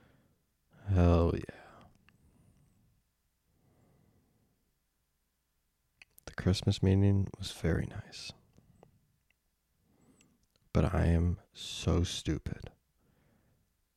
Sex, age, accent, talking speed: male, 20-39, American, 50 wpm